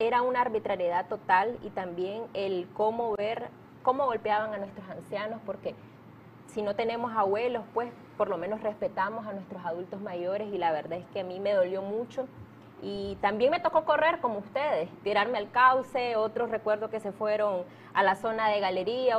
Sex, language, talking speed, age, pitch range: female, Spanish, 180 wpm, 20-39, 195-240 Hz